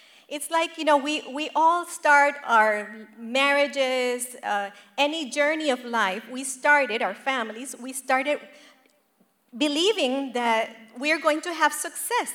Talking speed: 140 wpm